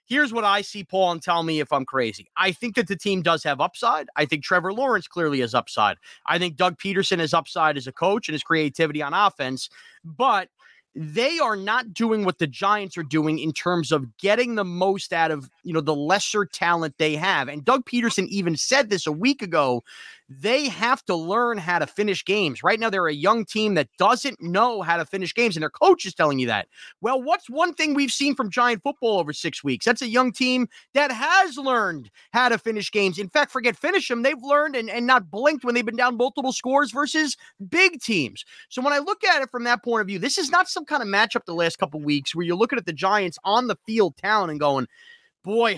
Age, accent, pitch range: 30-49, American, 170-245 Hz